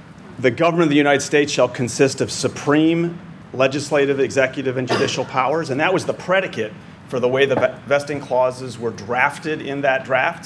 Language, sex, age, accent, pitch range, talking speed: English, male, 40-59, American, 130-160 Hz, 180 wpm